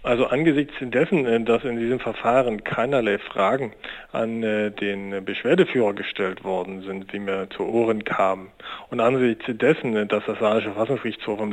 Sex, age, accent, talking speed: male, 40-59, German, 145 wpm